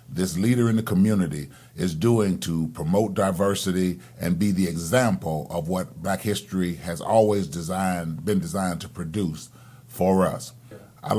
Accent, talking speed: American, 150 wpm